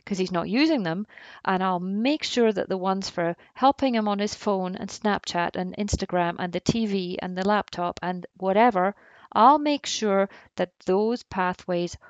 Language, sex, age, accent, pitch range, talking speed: English, female, 40-59, British, 185-230 Hz, 180 wpm